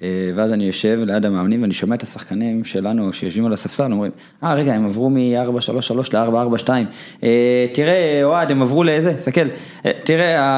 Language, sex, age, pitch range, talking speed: Hebrew, male, 20-39, 105-130 Hz, 170 wpm